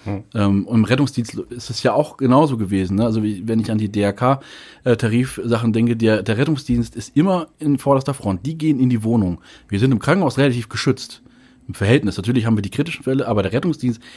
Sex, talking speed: male, 200 wpm